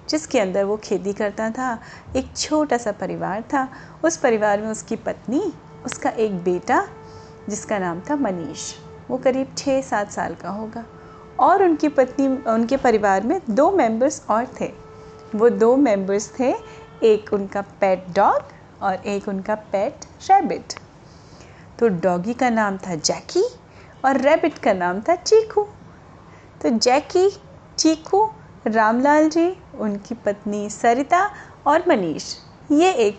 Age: 30-49